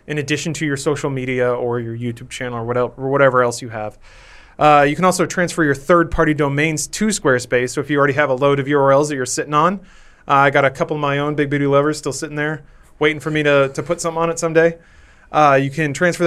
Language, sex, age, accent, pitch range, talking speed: English, male, 30-49, American, 130-160 Hz, 255 wpm